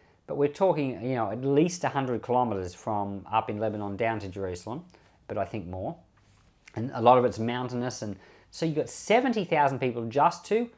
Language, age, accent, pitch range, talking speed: English, 40-59, Australian, 100-135 Hz, 195 wpm